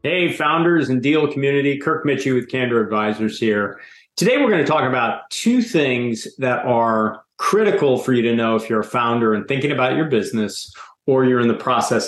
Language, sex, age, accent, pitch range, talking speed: English, male, 40-59, American, 105-140 Hz, 195 wpm